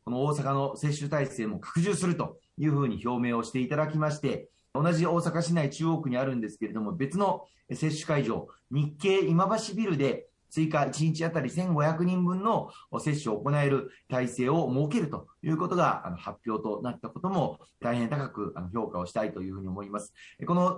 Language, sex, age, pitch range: Japanese, male, 30-49, 120-165 Hz